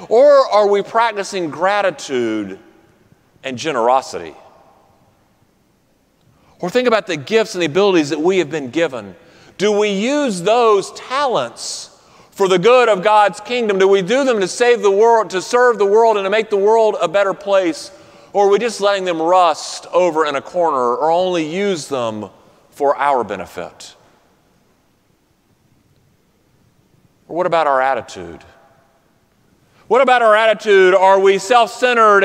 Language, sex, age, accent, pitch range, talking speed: English, male, 40-59, American, 165-220 Hz, 150 wpm